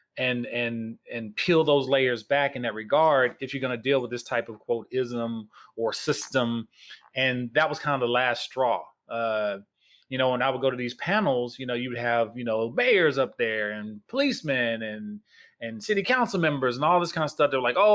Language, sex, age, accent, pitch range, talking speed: English, male, 30-49, American, 120-155 Hz, 220 wpm